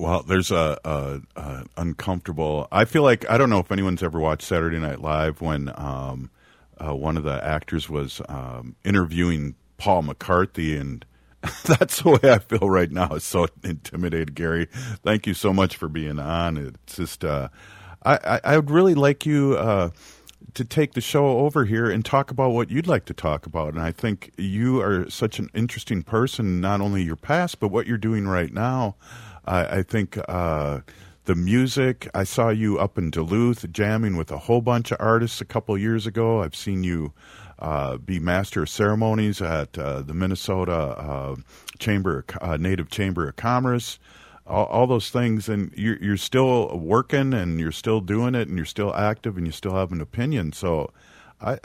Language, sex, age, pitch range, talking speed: English, male, 50-69, 80-115 Hz, 190 wpm